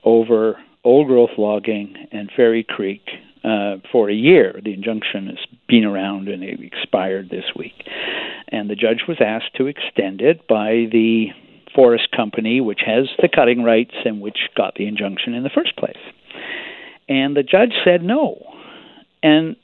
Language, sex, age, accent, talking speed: English, male, 60-79, American, 160 wpm